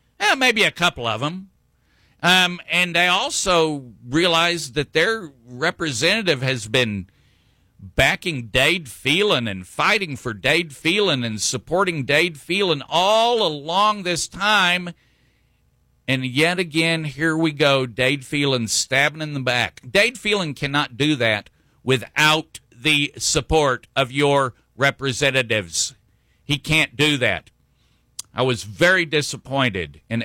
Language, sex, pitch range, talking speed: English, male, 120-170 Hz, 125 wpm